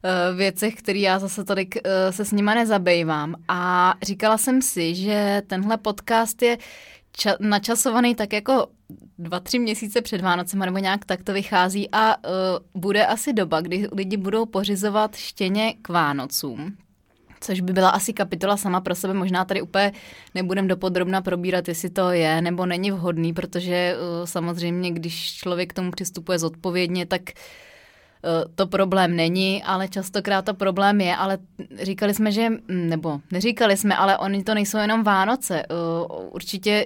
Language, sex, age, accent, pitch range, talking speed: Czech, female, 20-39, native, 175-200 Hz, 155 wpm